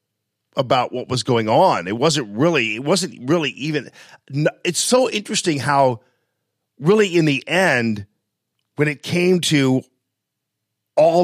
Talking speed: 135 wpm